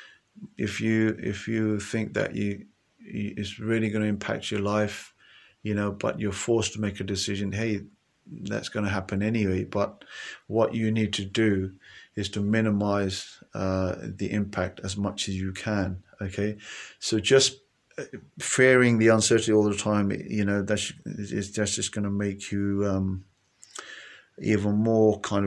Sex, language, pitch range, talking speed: male, English, 100-110 Hz, 165 wpm